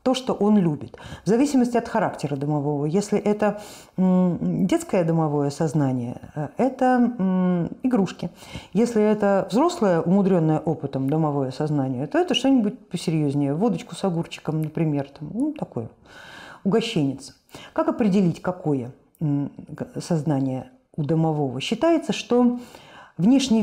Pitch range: 155-215 Hz